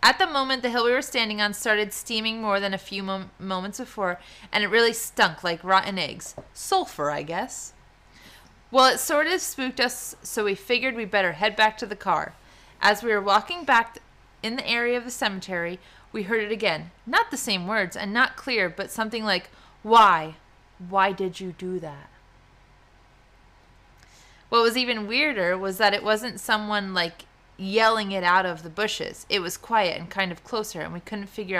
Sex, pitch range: female, 190-235 Hz